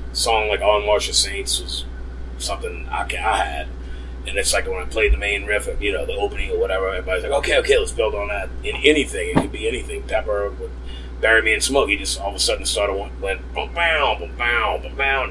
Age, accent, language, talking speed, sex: 30-49, American, English, 230 wpm, male